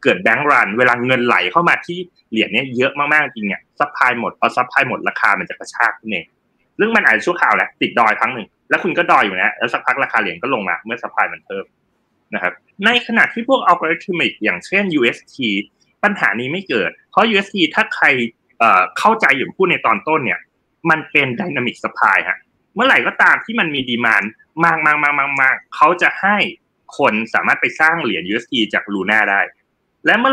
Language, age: Thai, 20-39